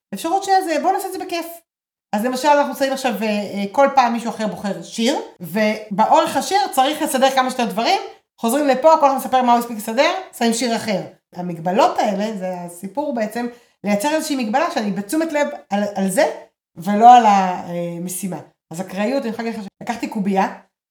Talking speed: 180 wpm